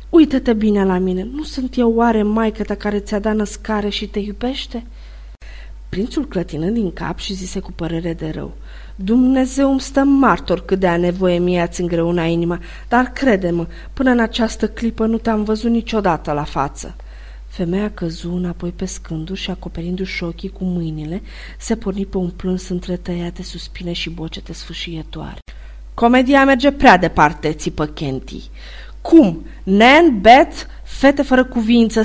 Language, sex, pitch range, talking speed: Romanian, female, 175-240 Hz, 155 wpm